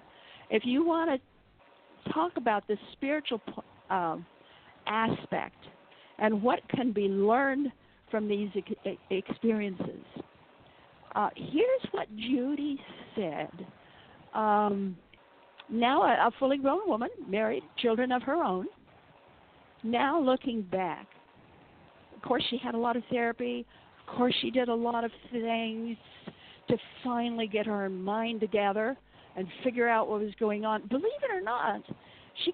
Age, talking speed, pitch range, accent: 50-69, 135 wpm, 210-255 Hz, American